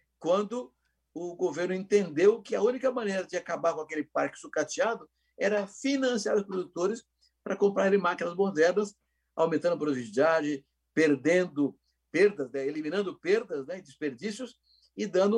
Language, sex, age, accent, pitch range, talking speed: Portuguese, male, 60-79, Brazilian, 155-215 Hz, 135 wpm